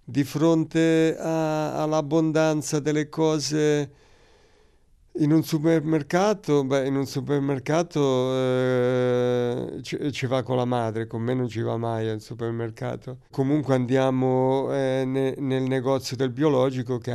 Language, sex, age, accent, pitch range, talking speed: Italian, male, 50-69, native, 125-145 Hz, 130 wpm